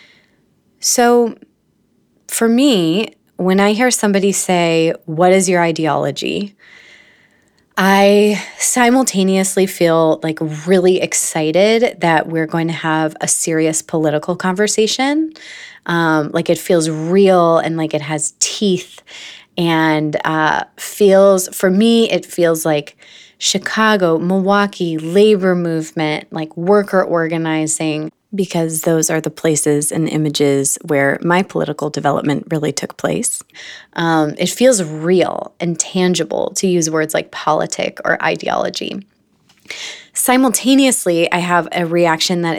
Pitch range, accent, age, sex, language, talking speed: 160-195 Hz, American, 20-39, female, English, 120 wpm